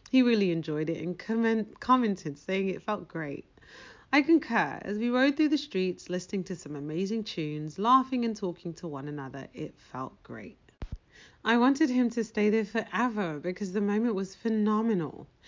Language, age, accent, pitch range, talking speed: English, 30-49, British, 165-250 Hz, 170 wpm